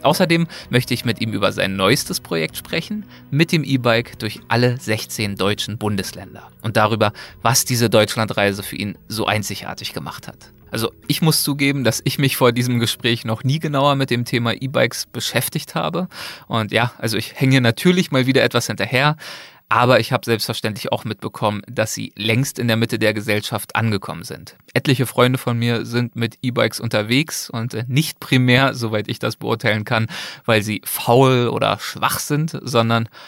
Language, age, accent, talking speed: German, 20-39, German, 175 wpm